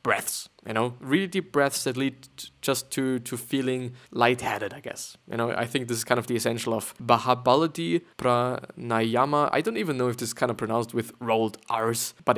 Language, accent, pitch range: English, German, 120-150 Hz